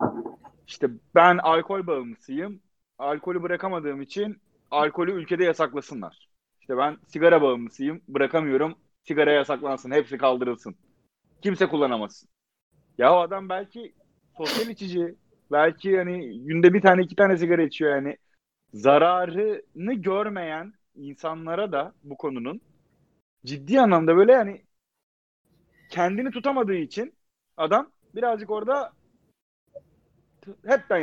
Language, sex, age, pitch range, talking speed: Turkish, male, 30-49, 140-195 Hz, 105 wpm